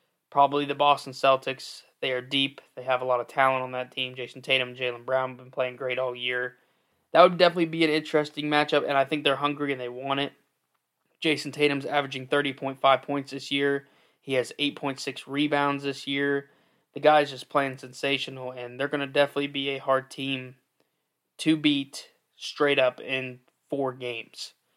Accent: American